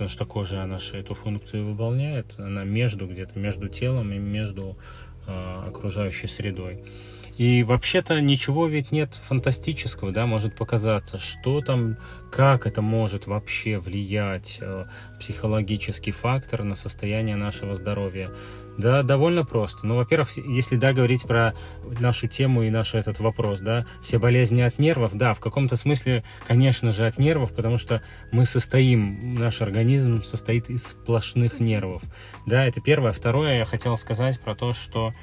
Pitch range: 105-125 Hz